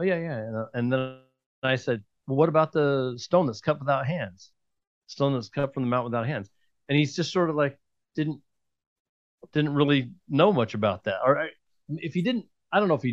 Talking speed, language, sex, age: 225 wpm, English, male, 40-59